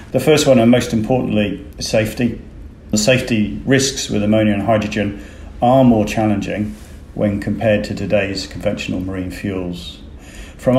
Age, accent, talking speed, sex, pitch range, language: 40-59, British, 140 wpm, male, 100-120 Hz, English